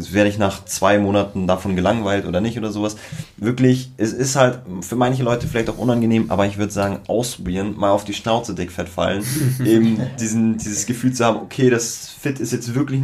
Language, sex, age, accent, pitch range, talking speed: German, male, 20-39, German, 95-115 Hz, 200 wpm